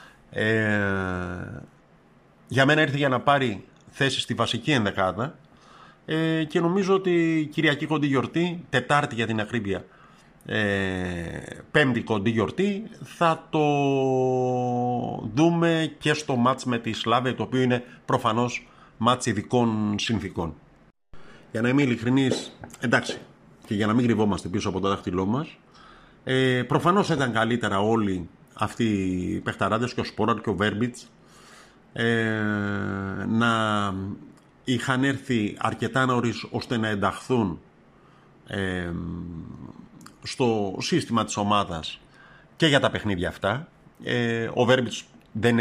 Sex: male